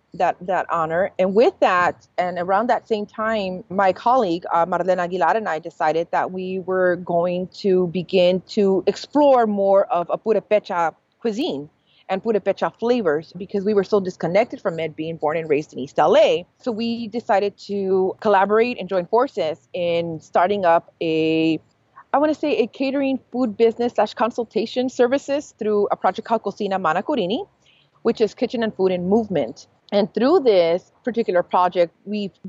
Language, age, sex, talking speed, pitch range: English, 30-49, female, 170 wpm, 180-230 Hz